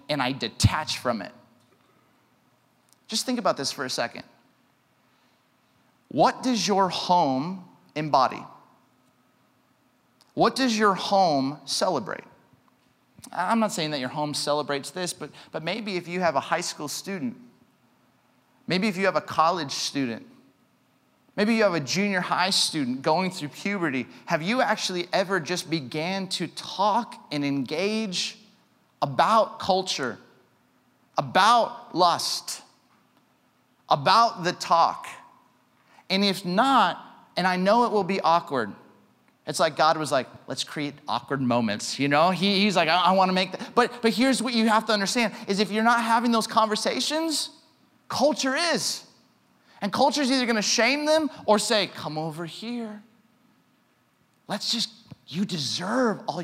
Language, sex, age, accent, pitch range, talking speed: English, male, 30-49, American, 155-225 Hz, 145 wpm